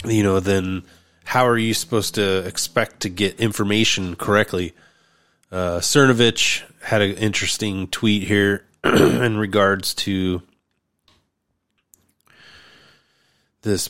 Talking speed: 105 wpm